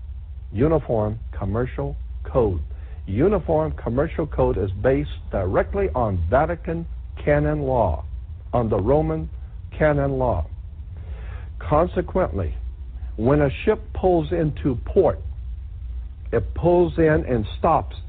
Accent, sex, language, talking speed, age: American, male, English, 100 wpm, 60-79